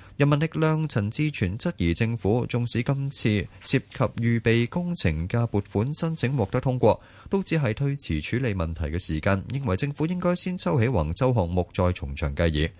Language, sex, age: Chinese, male, 30-49